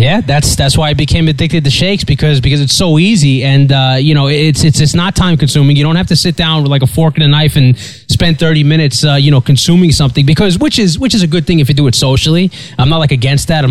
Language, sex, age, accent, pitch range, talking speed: English, male, 20-39, American, 130-160 Hz, 285 wpm